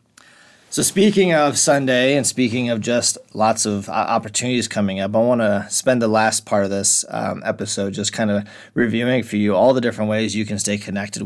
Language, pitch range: English, 105-120 Hz